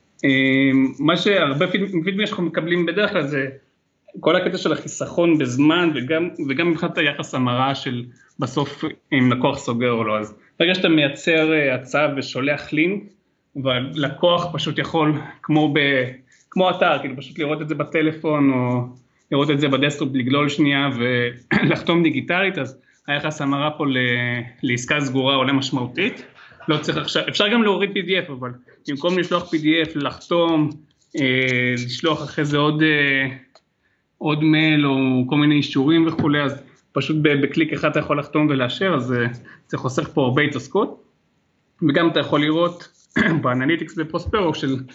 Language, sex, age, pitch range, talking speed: Hebrew, male, 30-49, 130-160 Hz, 145 wpm